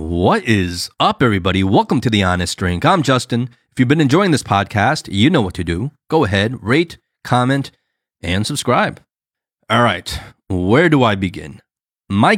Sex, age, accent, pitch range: male, 30-49, American, 95-130 Hz